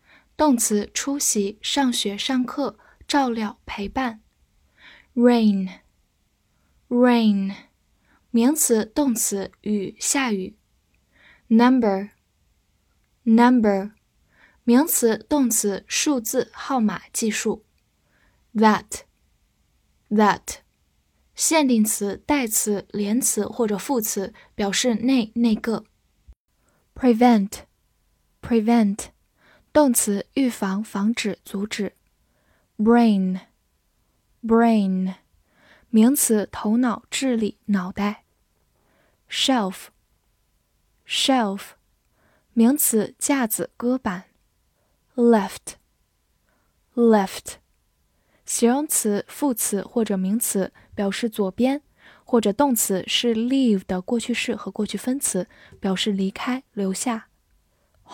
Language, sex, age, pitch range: Chinese, female, 10-29, 200-245 Hz